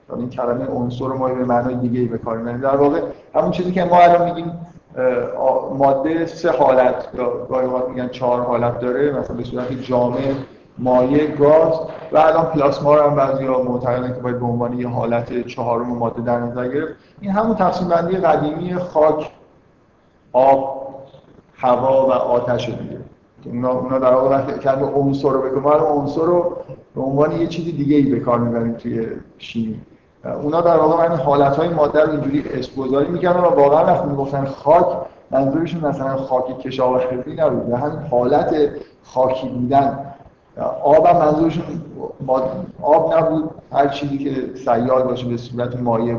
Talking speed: 155 wpm